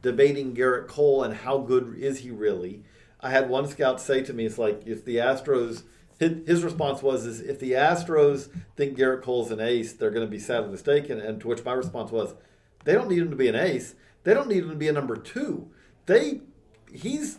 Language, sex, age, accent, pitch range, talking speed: English, male, 40-59, American, 120-170 Hz, 230 wpm